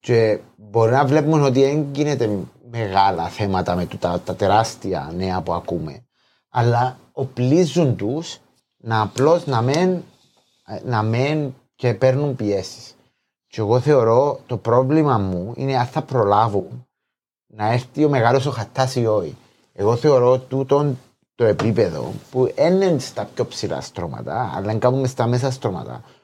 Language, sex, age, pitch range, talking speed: Greek, male, 30-49, 110-135 Hz, 140 wpm